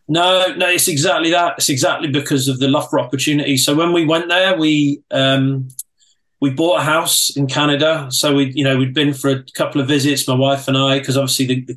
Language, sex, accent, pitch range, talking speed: English, male, British, 135-150 Hz, 225 wpm